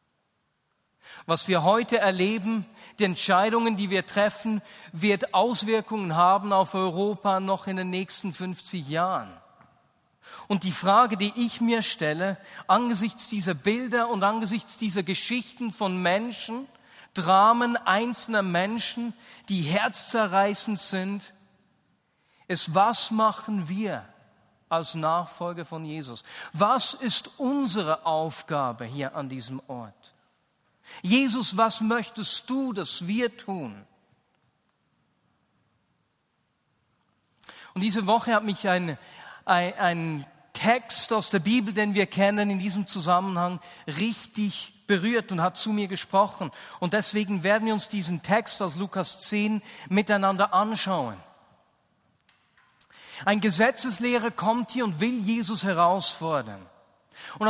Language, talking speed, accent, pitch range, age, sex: German, 115 wpm, German, 180-225 Hz, 40-59, male